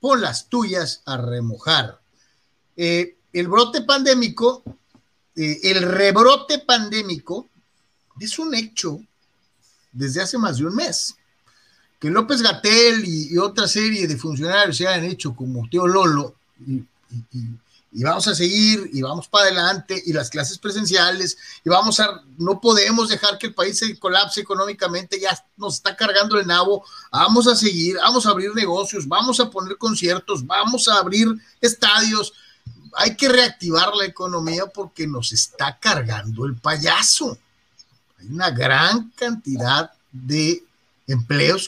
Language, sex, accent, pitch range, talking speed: Spanish, male, Mexican, 145-215 Hz, 145 wpm